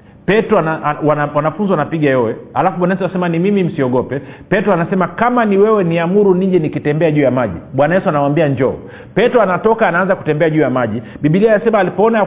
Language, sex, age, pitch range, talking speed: Swahili, male, 40-59, 140-190 Hz, 170 wpm